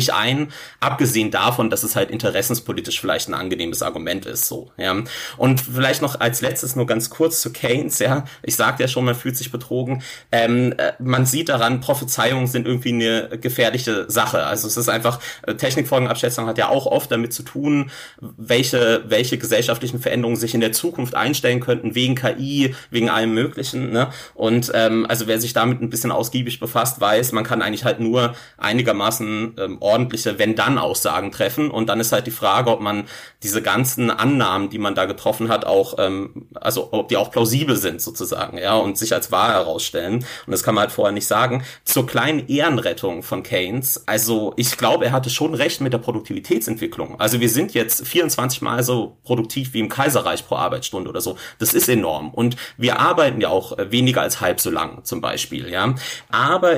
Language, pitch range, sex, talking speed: German, 115-130 Hz, male, 190 wpm